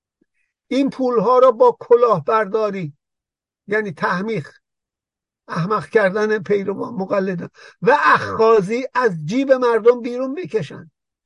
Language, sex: Persian, male